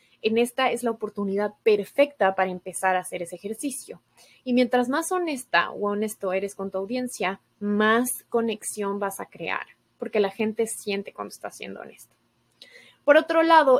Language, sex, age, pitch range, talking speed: Spanish, female, 20-39, 200-250 Hz, 165 wpm